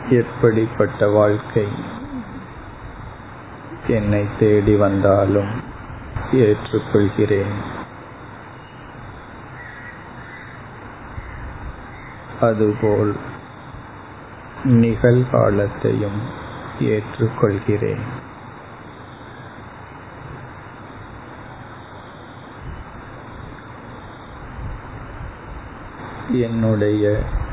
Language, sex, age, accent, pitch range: Tamil, male, 50-69, native, 105-120 Hz